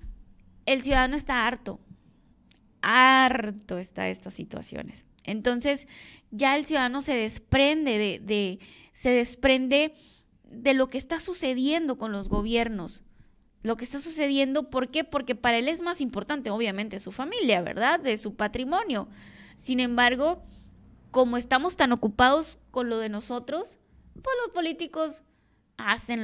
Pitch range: 210-270 Hz